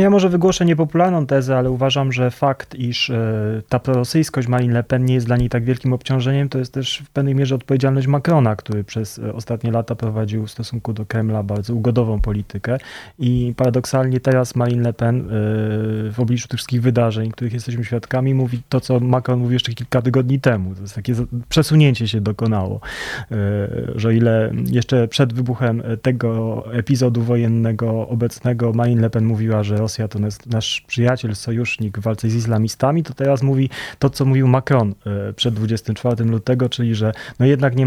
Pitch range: 110-130 Hz